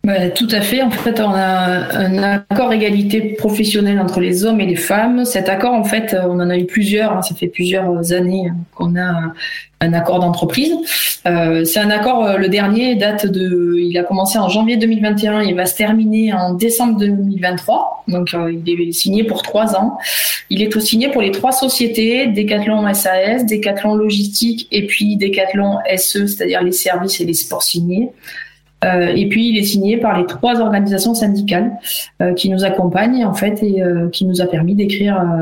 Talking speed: 185 wpm